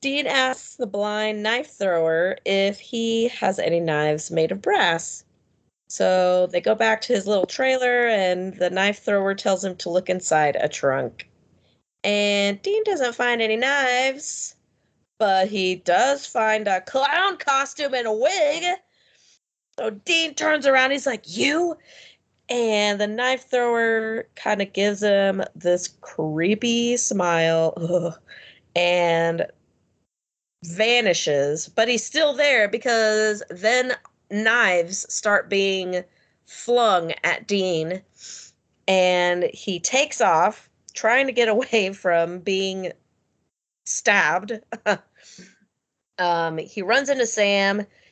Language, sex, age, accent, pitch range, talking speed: English, female, 30-49, American, 180-245 Hz, 120 wpm